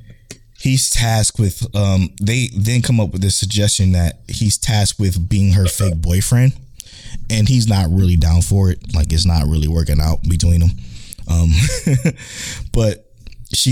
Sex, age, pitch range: male, 20-39, 90-115 Hz